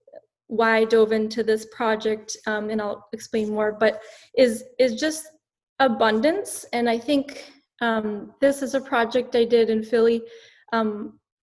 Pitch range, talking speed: 215-250 Hz, 150 wpm